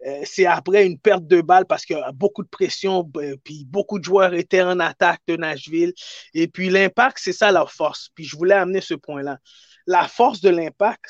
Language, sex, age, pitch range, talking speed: French, male, 30-49, 165-215 Hz, 210 wpm